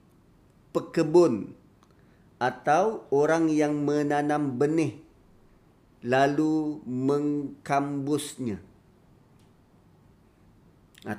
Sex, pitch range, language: male, 125-175 Hz, Malay